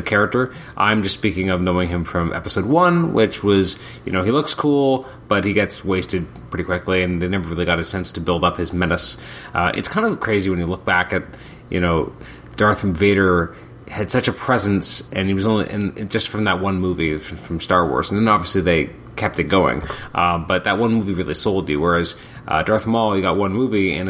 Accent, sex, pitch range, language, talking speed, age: American, male, 90-110 Hz, English, 225 wpm, 30-49